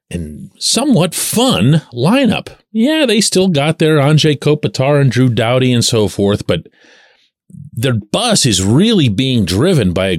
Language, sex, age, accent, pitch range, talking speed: English, male, 40-59, American, 110-165 Hz, 155 wpm